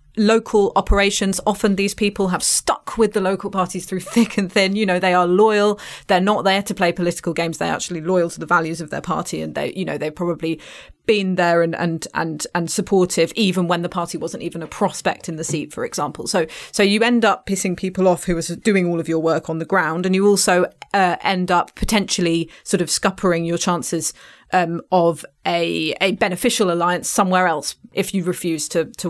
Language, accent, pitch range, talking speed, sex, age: English, British, 175-210 Hz, 215 wpm, female, 30-49